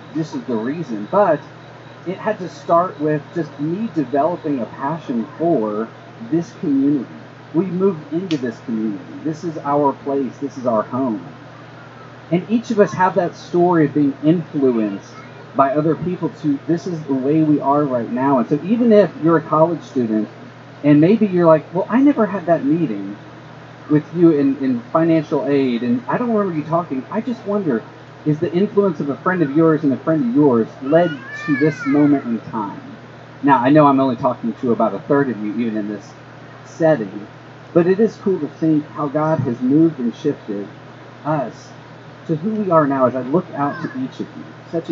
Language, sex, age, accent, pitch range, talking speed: English, male, 30-49, American, 135-170 Hz, 200 wpm